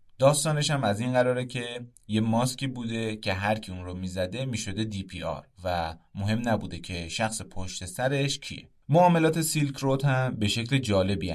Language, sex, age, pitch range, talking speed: Persian, male, 30-49, 95-135 Hz, 175 wpm